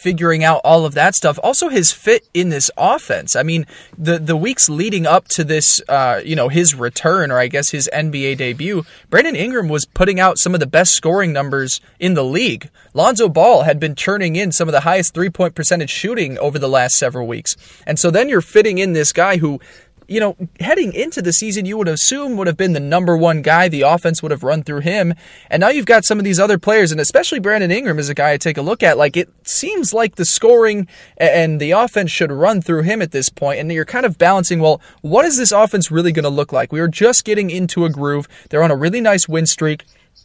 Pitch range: 150-195 Hz